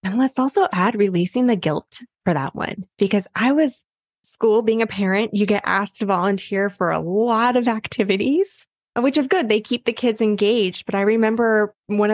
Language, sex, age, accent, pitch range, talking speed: English, female, 20-39, American, 200-255 Hz, 195 wpm